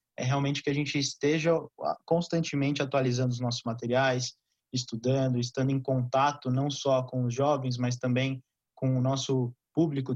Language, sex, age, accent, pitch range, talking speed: Portuguese, male, 20-39, Brazilian, 125-140 Hz, 155 wpm